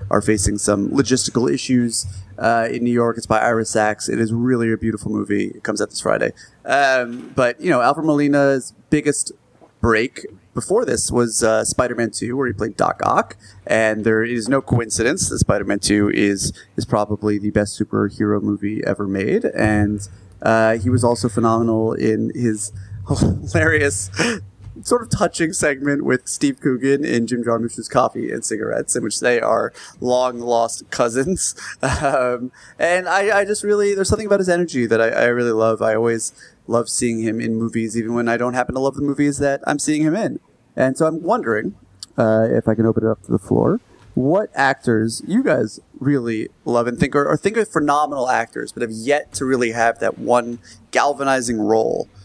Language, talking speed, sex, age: English, 185 wpm, male, 30-49